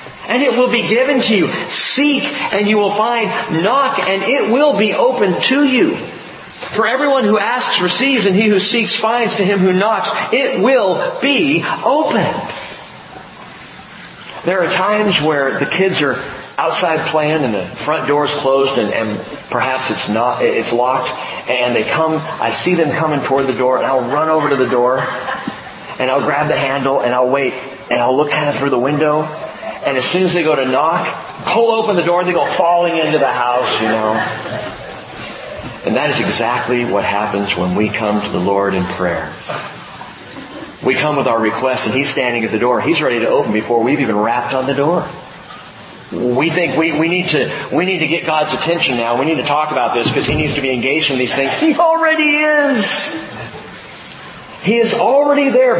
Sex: male